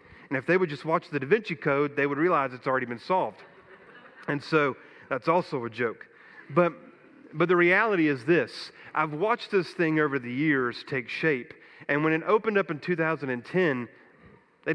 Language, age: English, 30-49